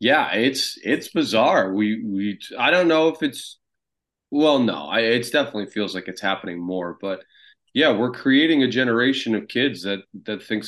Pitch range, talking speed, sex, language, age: 90-110 Hz, 180 wpm, male, English, 30-49